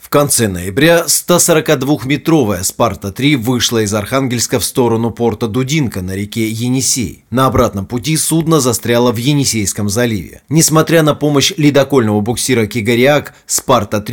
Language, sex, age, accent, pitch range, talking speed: Russian, male, 30-49, native, 110-140 Hz, 125 wpm